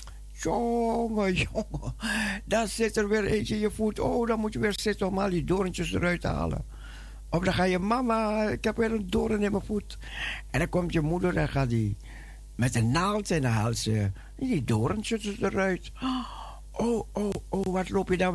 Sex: male